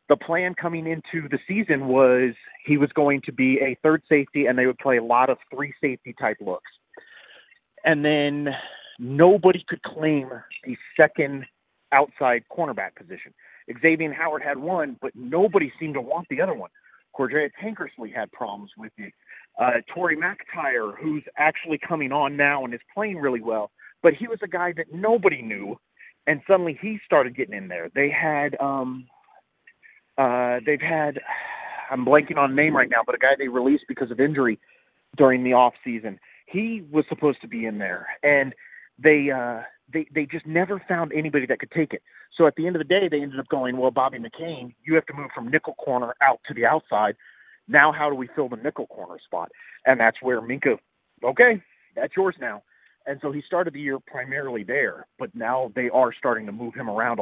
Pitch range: 130-165 Hz